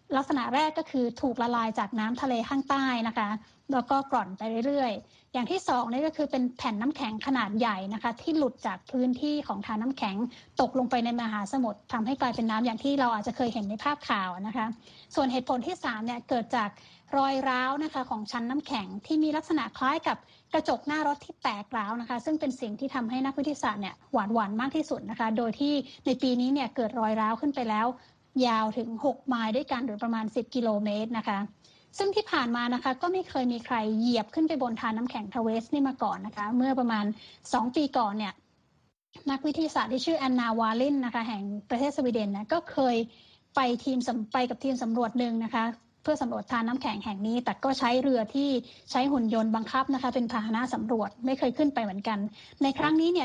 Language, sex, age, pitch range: Thai, female, 20-39, 225-275 Hz